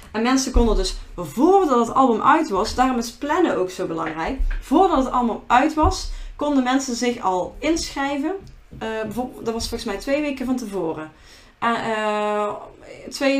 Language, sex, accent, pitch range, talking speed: Dutch, female, Dutch, 195-260 Hz, 160 wpm